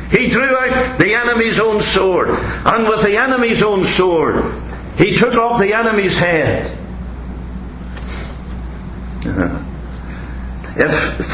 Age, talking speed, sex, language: 60-79, 105 wpm, male, English